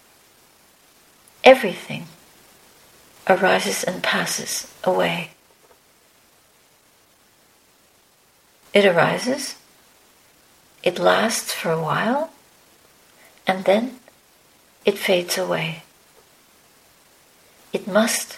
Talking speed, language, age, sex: 60 wpm, English, 60-79, female